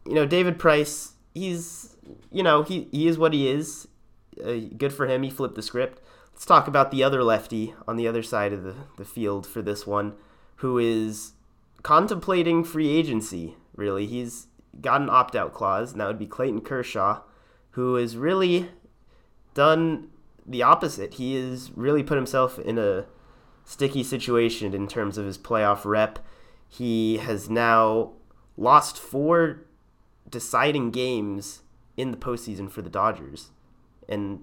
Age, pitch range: 30-49, 110-145 Hz